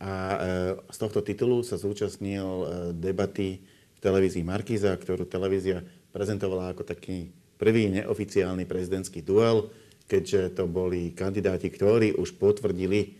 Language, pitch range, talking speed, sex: Slovak, 95-105 Hz, 120 wpm, male